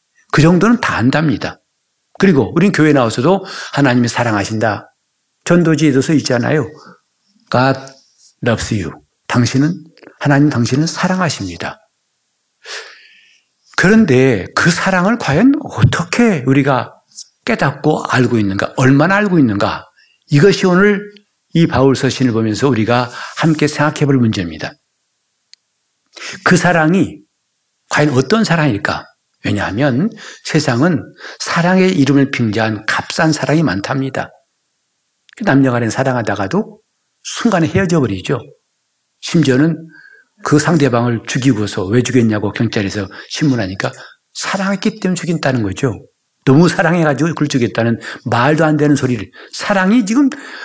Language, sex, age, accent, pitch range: Korean, male, 60-79, native, 120-175 Hz